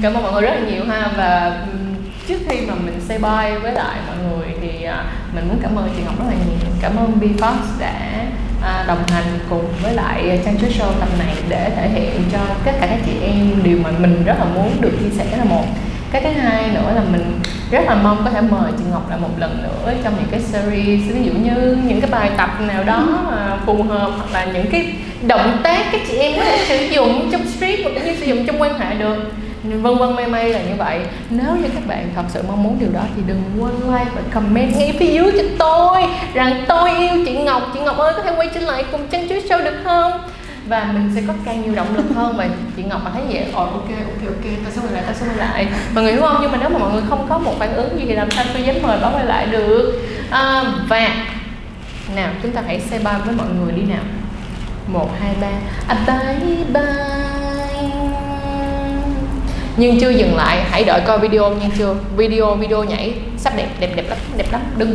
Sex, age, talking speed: female, 20-39, 240 wpm